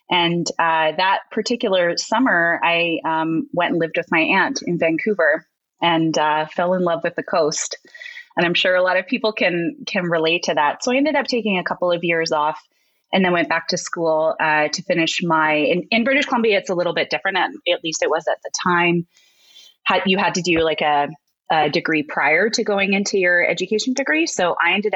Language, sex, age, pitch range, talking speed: English, female, 20-39, 165-235 Hz, 215 wpm